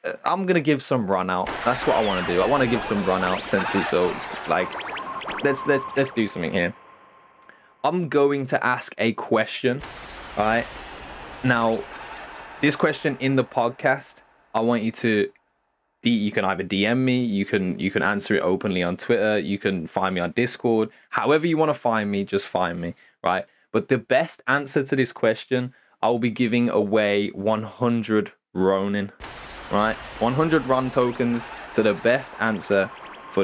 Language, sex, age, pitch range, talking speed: English, male, 20-39, 110-150 Hz, 175 wpm